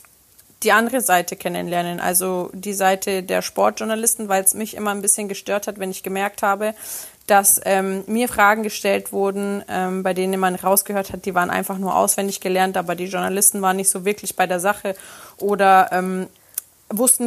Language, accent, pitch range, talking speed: German, German, 185-215 Hz, 180 wpm